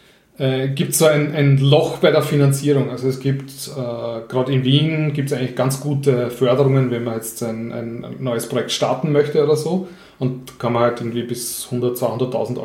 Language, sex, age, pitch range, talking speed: German, male, 30-49, 120-140 Hz, 190 wpm